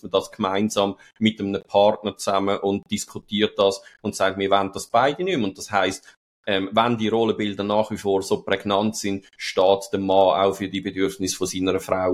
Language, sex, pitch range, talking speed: German, male, 95-125 Hz, 200 wpm